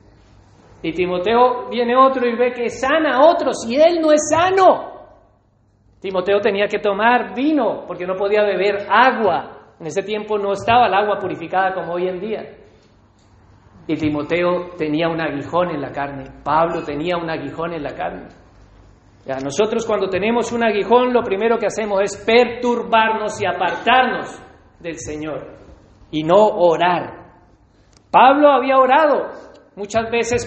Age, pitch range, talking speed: 40-59, 155-245 Hz, 150 wpm